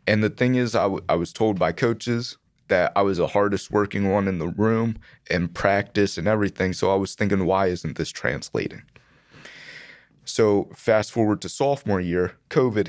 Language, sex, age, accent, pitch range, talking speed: English, male, 20-39, American, 95-120 Hz, 185 wpm